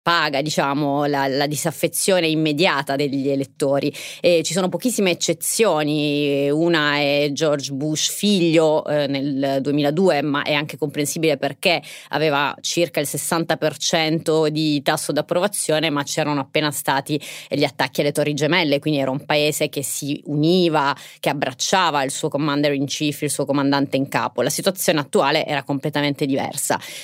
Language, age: Italian, 30-49